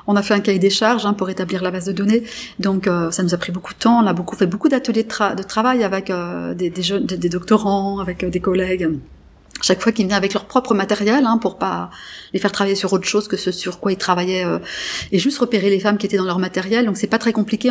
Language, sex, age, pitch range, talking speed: English, female, 30-49, 190-230 Hz, 280 wpm